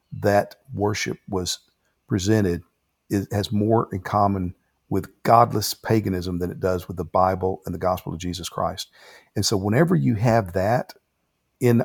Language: English